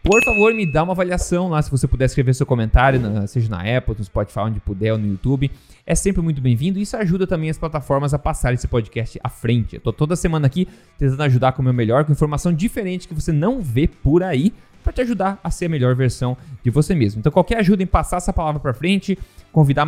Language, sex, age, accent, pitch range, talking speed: Portuguese, male, 20-39, Brazilian, 120-180 Hz, 240 wpm